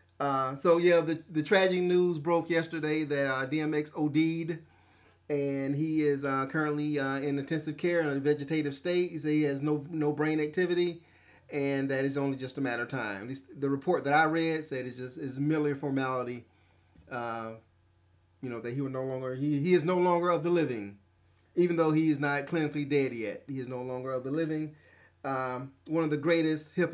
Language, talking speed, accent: English, 205 wpm, American